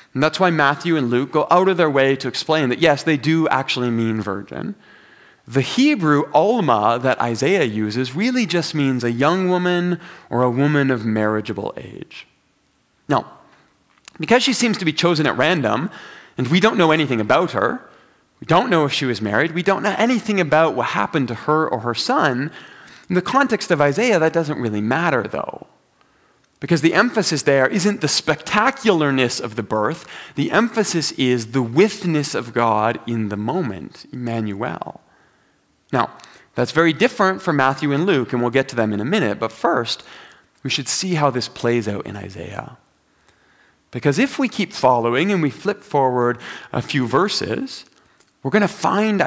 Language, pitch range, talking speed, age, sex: English, 120-175 Hz, 180 wpm, 30-49, male